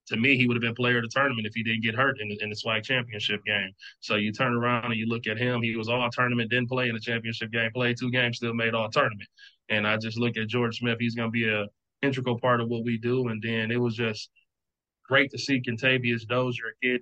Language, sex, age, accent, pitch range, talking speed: English, male, 20-39, American, 115-125 Hz, 270 wpm